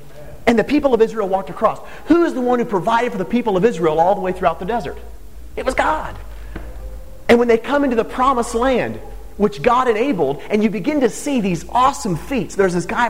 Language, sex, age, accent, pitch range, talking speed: English, male, 30-49, American, 125-210 Hz, 225 wpm